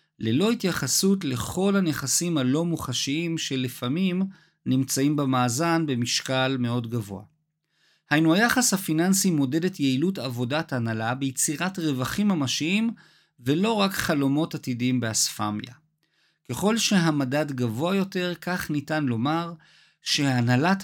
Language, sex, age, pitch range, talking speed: Hebrew, male, 50-69, 130-170 Hz, 105 wpm